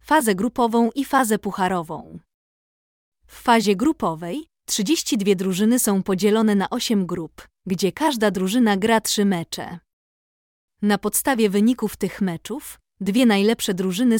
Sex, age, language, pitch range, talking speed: female, 20-39, Polish, 195-245 Hz, 125 wpm